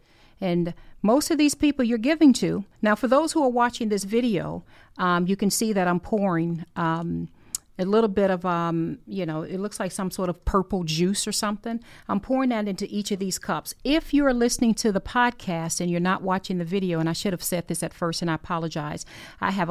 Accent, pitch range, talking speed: American, 170-210 Hz, 230 wpm